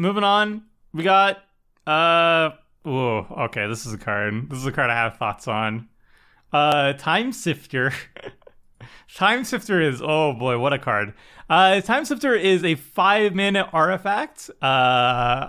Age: 30-49